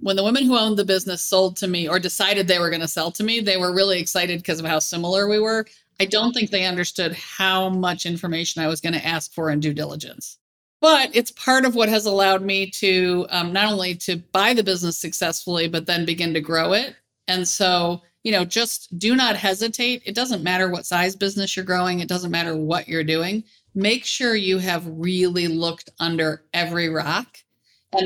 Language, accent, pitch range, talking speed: English, American, 170-200 Hz, 215 wpm